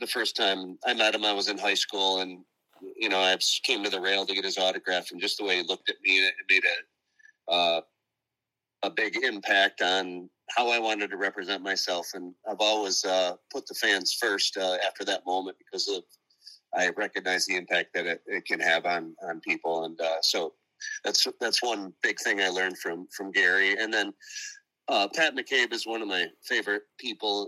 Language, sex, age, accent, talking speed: English, male, 30-49, American, 205 wpm